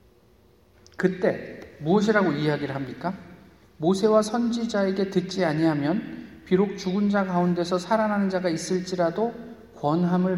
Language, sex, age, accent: Korean, male, 40-59, native